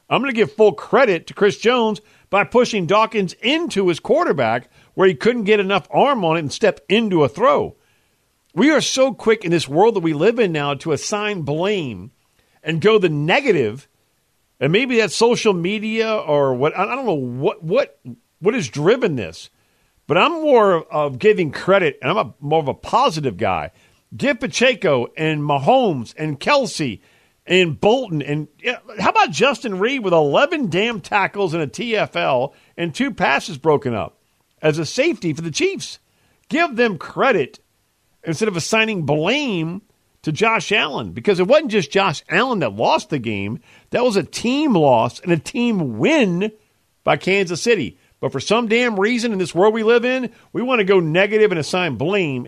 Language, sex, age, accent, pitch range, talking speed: English, male, 50-69, American, 155-225 Hz, 180 wpm